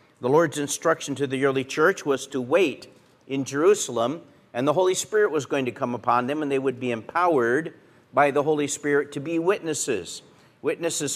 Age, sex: 50-69, male